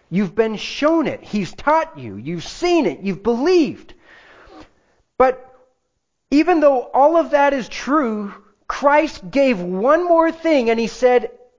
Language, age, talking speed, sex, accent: English, 40-59, 145 wpm, male, American